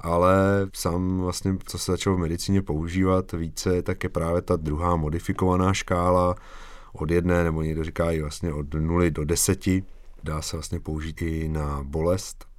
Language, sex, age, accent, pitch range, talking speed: Czech, male, 30-49, native, 80-90 Hz, 165 wpm